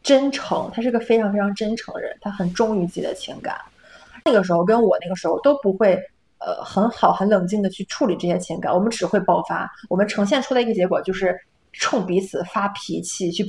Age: 20-39